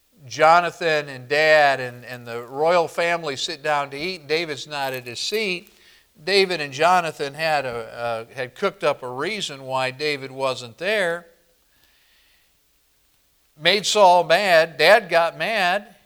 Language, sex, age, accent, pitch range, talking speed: English, male, 50-69, American, 135-195 Hz, 140 wpm